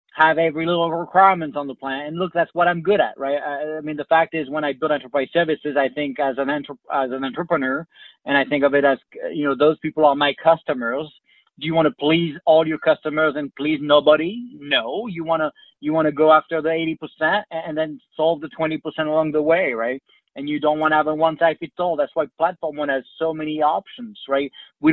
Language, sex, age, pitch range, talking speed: English, male, 30-49, 145-165 Hz, 230 wpm